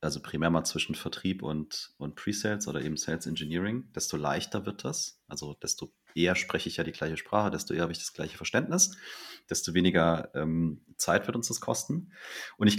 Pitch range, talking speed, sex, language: 85-105 Hz, 195 wpm, male, German